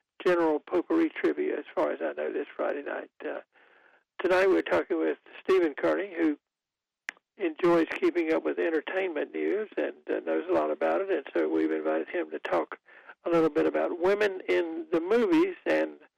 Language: English